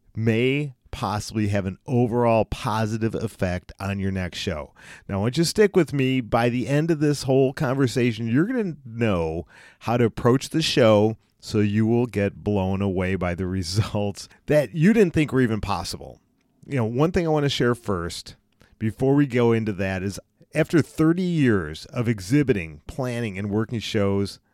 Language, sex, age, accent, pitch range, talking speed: English, male, 40-59, American, 100-130 Hz, 180 wpm